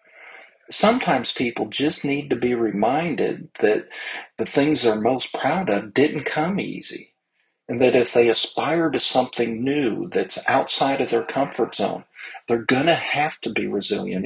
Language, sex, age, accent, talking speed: English, male, 50-69, American, 155 wpm